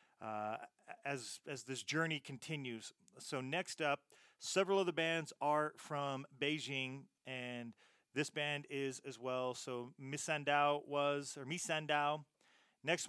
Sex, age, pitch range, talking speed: male, 30-49, 130-155 Hz, 130 wpm